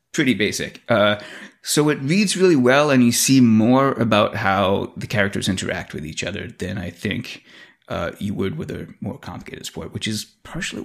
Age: 30-49